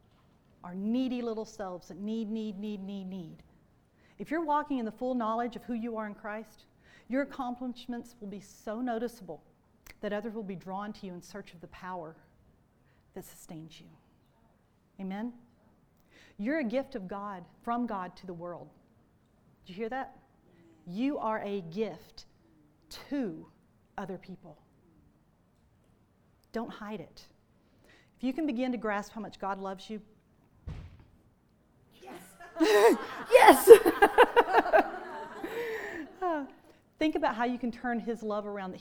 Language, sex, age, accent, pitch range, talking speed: English, female, 40-59, American, 185-240 Hz, 140 wpm